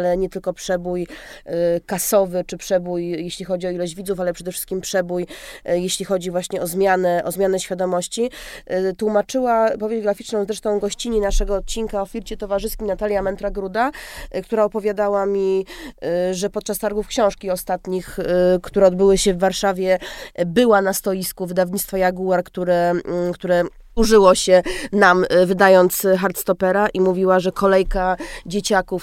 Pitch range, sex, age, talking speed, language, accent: 180-200 Hz, female, 20-39, 140 wpm, Polish, native